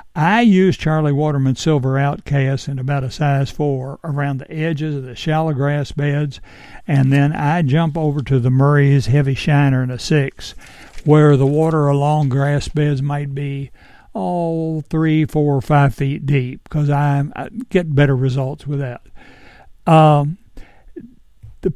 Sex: male